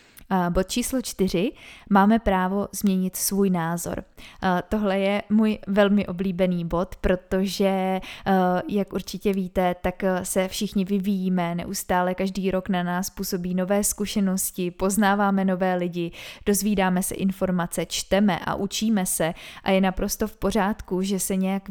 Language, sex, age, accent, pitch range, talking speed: Czech, female, 20-39, native, 185-210 Hz, 135 wpm